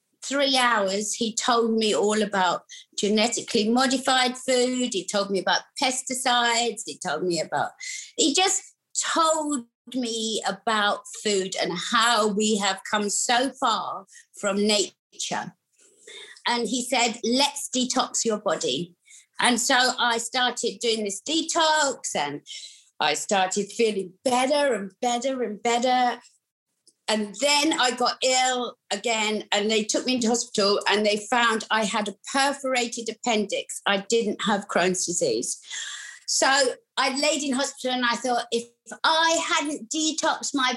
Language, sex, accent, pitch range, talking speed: English, female, British, 205-265 Hz, 140 wpm